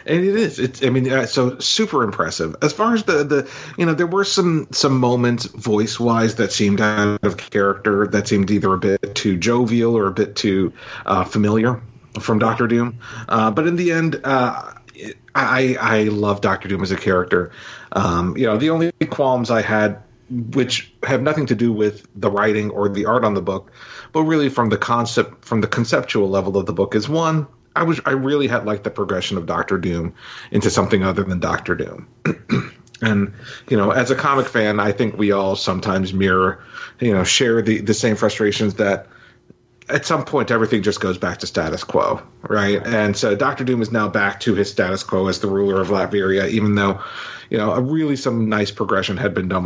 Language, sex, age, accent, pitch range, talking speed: English, male, 40-59, American, 100-130 Hz, 205 wpm